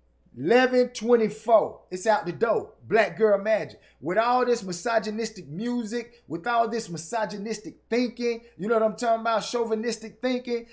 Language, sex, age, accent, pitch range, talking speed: English, male, 30-49, American, 165-215 Hz, 145 wpm